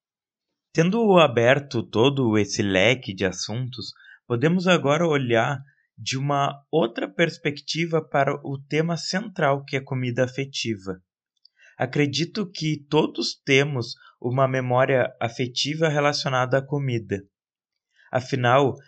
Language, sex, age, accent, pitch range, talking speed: Portuguese, male, 20-39, Brazilian, 120-155 Hz, 105 wpm